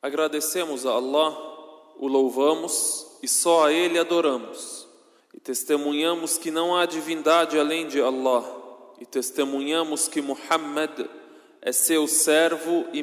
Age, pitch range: 20-39, 155-210 Hz